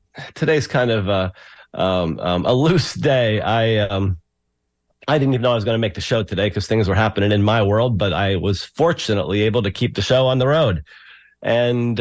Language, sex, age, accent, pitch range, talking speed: English, male, 40-59, American, 100-130 Hz, 215 wpm